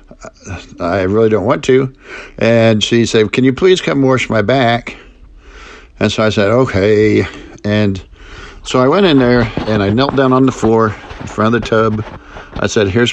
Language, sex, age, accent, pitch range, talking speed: English, male, 50-69, American, 105-130 Hz, 185 wpm